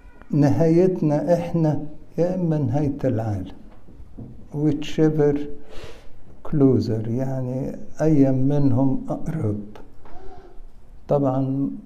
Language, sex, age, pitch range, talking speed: English, male, 60-79, 120-150 Hz, 65 wpm